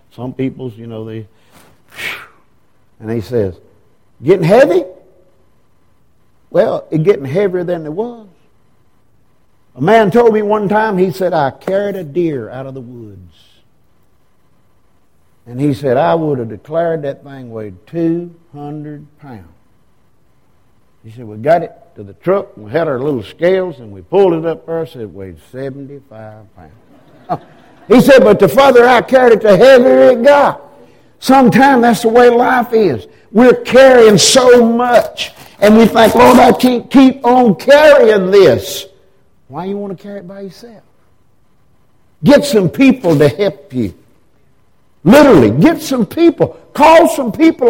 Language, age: English, 50-69